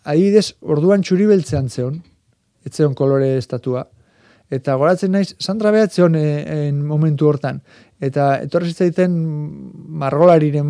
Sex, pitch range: male, 135-160 Hz